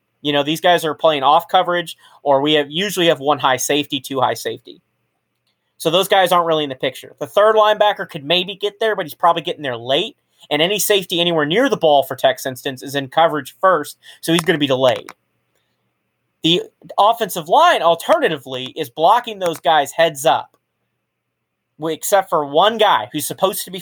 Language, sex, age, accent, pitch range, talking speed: English, male, 30-49, American, 155-205 Hz, 195 wpm